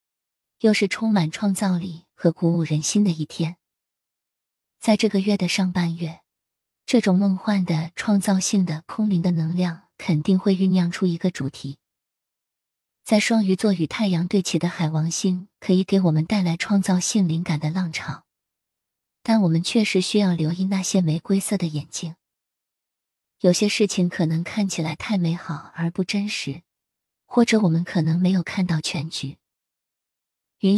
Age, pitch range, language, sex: 20-39, 165-200 Hz, Chinese, female